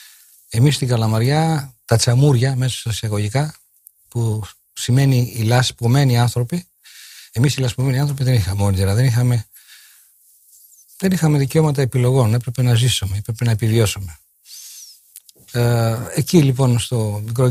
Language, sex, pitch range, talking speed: Greek, male, 105-130 Hz, 115 wpm